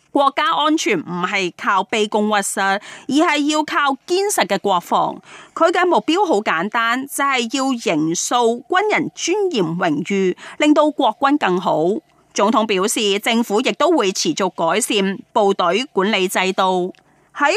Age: 30-49